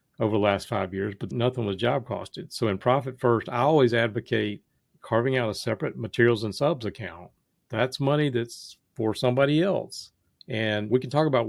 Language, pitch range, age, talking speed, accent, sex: English, 105-125 Hz, 50-69, 190 wpm, American, male